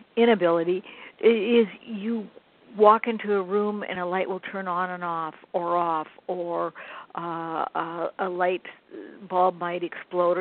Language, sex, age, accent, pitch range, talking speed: English, female, 60-79, American, 185-230 Hz, 145 wpm